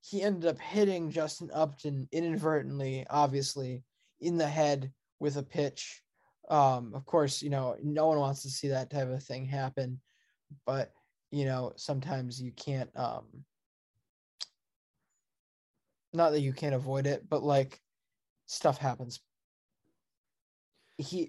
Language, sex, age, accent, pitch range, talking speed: English, male, 20-39, American, 140-170 Hz, 130 wpm